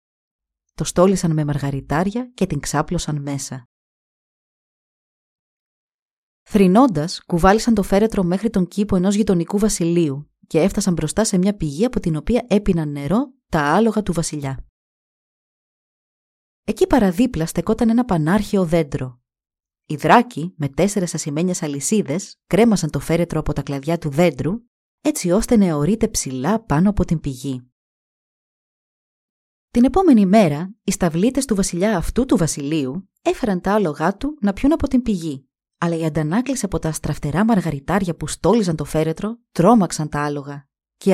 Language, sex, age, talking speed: Greek, female, 30-49, 140 wpm